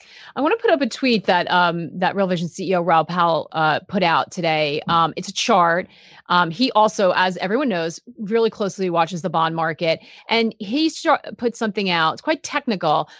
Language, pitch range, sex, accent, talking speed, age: English, 175-235 Hz, female, American, 200 wpm, 30-49